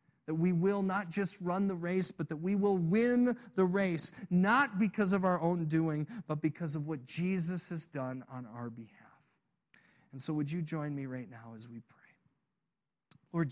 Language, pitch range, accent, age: English, 170-210 Hz, American, 40-59